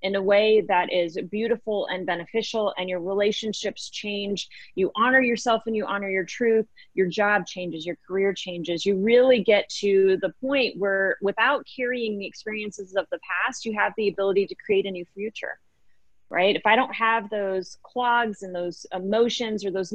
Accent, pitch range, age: American, 185-225 Hz, 30-49